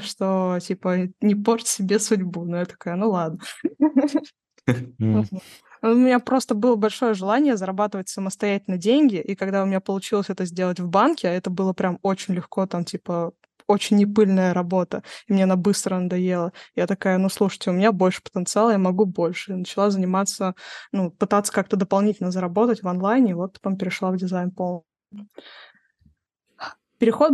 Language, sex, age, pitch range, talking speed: Russian, female, 20-39, 185-215 Hz, 160 wpm